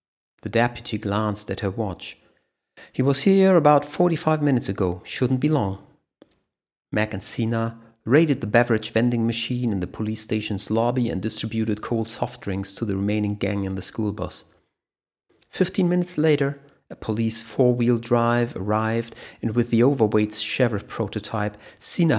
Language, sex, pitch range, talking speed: English, male, 105-125 Hz, 160 wpm